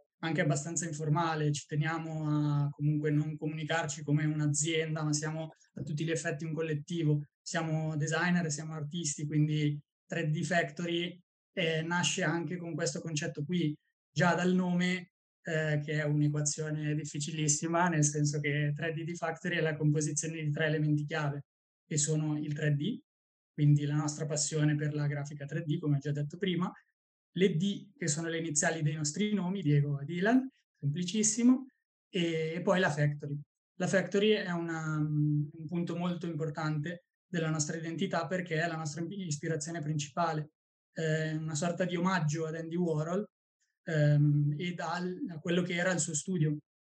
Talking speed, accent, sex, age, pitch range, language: 155 wpm, native, male, 20-39, 150-175 Hz, Italian